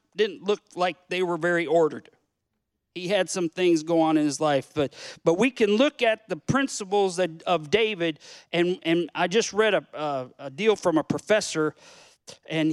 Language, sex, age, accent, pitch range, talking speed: English, male, 50-69, American, 155-200 Hz, 190 wpm